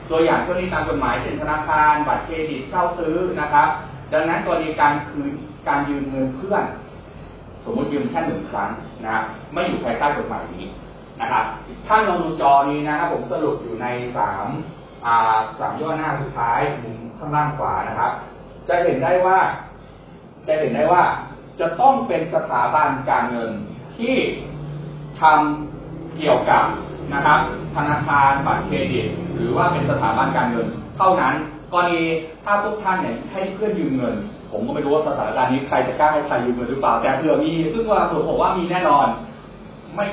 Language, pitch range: Thai, 140-175 Hz